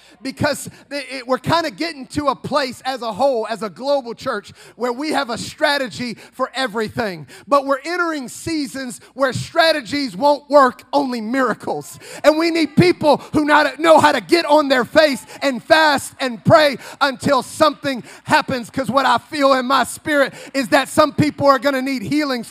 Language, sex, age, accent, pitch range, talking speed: English, male, 40-59, American, 230-295 Hz, 175 wpm